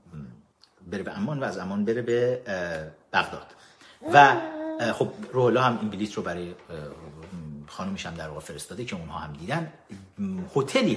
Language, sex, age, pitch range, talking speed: Persian, male, 50-69, 120-195 Hz, 155 wpm